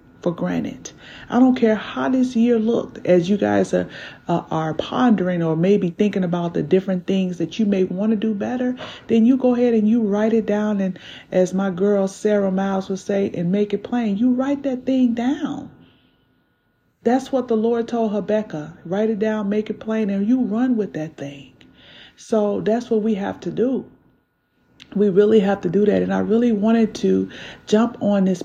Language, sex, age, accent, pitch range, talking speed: English, female, 40-59, American, 175-230 Hz, 200 wpm